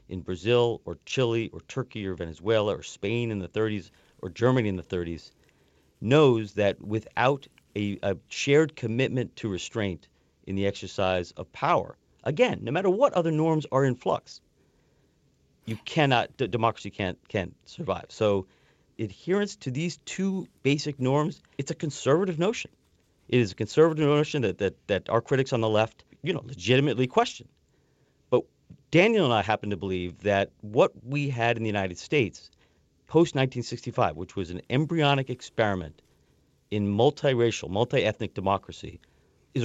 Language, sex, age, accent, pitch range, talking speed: English, male, 40-59, American, 100-140 Hz, 155 wpm